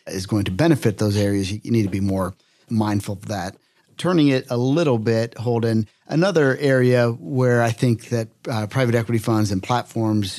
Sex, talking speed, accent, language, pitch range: male, 185 wpm, American, English, 110-125 Hz